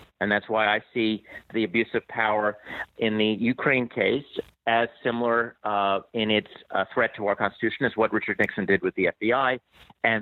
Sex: male